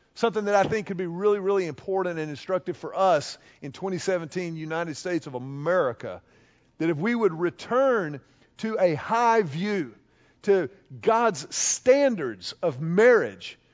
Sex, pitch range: male, 165-220 Hz